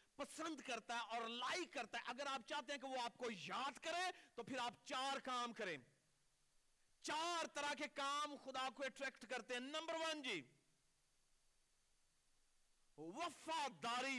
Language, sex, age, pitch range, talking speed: Urdu, male, 50-69, 240-320 Hz, 150 wpm